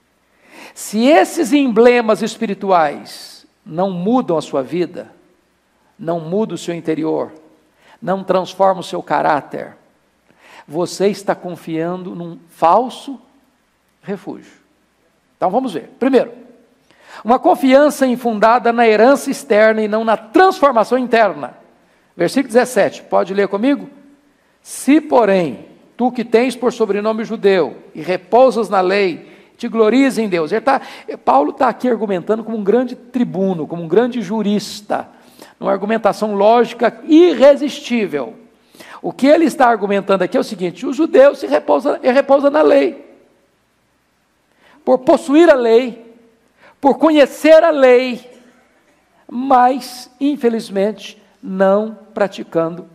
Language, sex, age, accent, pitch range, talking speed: Portuguese, male, 60-79, Brazilian, 195-260 Hz, 120 wpm